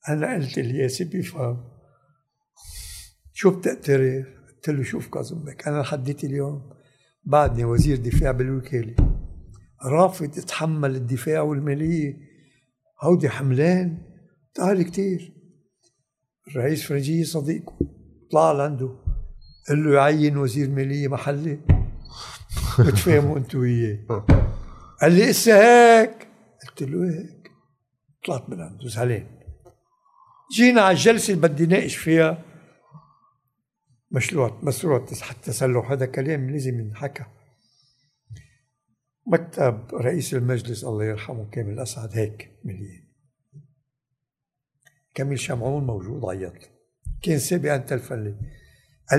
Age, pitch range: 60-79, 120-155 Hz